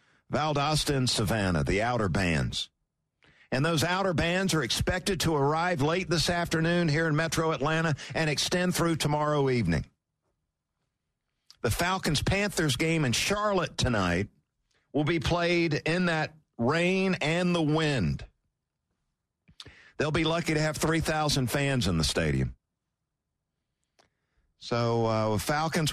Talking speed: 125 wpm